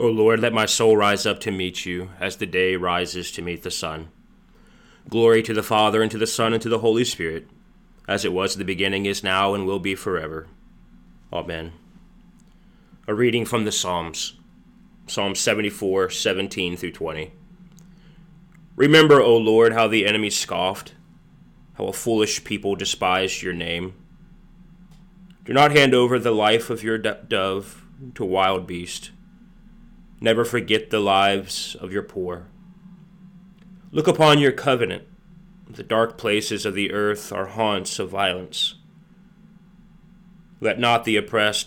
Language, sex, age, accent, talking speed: English, male, 30-49, American, 150 wpm